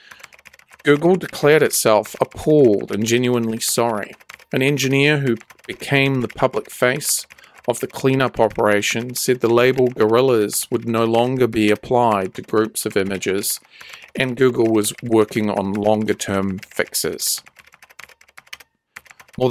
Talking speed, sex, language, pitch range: 120 wpm, male, English, 110-130 Hz